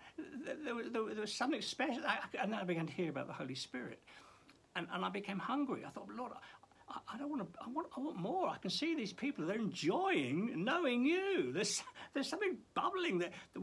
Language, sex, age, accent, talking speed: English, male, 60-79, British, 210 wpm